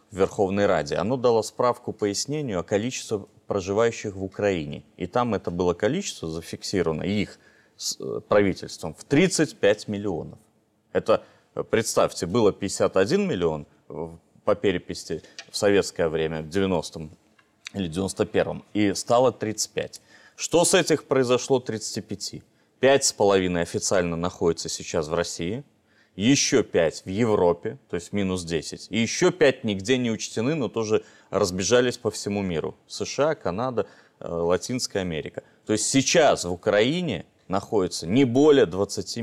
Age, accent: 30-49, native